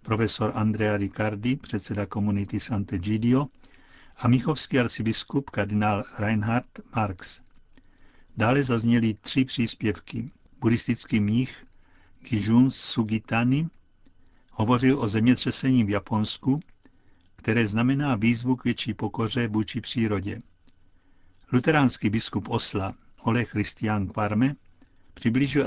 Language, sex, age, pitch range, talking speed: Czech, male, 50-69, 105-125 Hz, 95 wpm